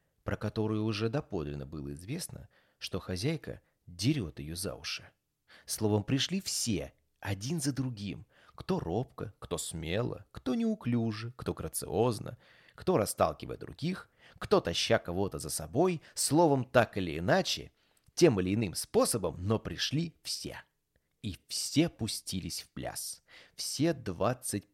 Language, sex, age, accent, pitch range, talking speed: Russian, male, 30-49, native, 95-125 Hz, 125 wpm